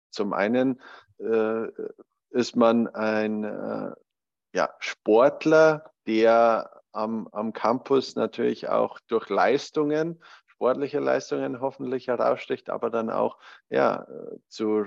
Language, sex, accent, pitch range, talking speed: German, male, German, 105-120 Hz, 105 wpm